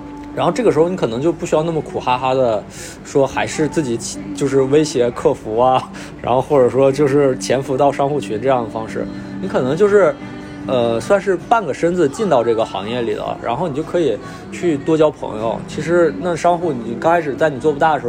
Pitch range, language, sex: 120-165 Hz, Chinese, male